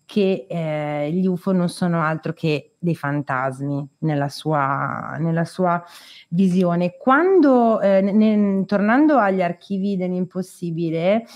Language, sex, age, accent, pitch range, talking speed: Italian, female, 30-49, native, 170-210 Hz, 115 wpm